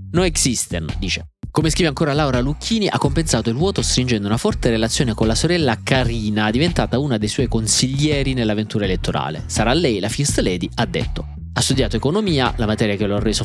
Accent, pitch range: native, 105-130 Hz